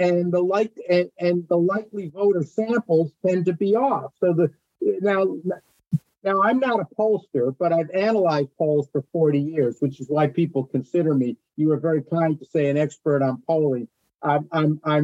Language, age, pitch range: English, 50-69, 145-195 Hz